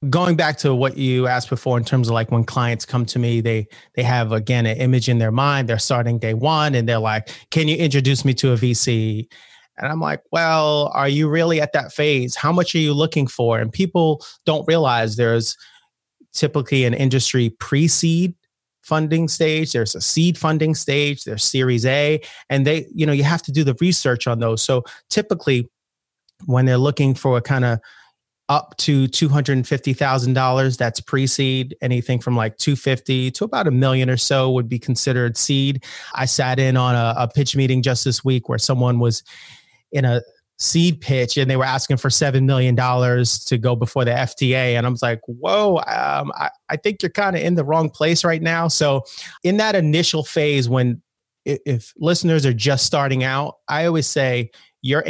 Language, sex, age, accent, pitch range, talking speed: English, male, 30-49, American, 125-155 Hz, 195 wpm